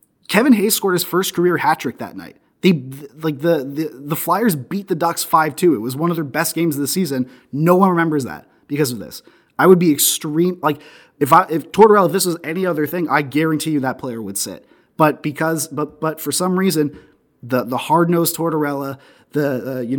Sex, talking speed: male, 230 wpm